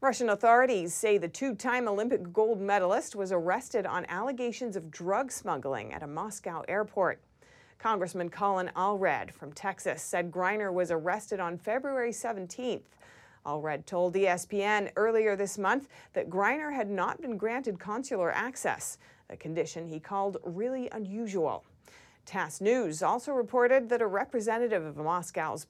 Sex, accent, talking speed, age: female, American, 140 wpm, 40-59